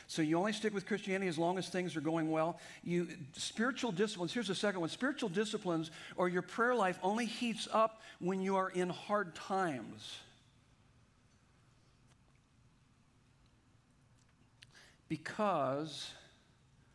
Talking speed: 125 wpm